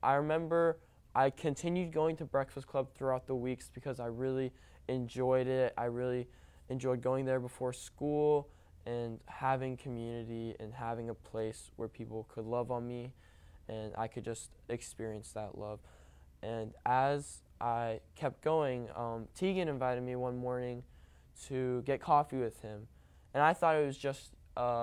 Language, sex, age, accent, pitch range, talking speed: English, male, 10-29, American, 110-135 Hz, 160 wpm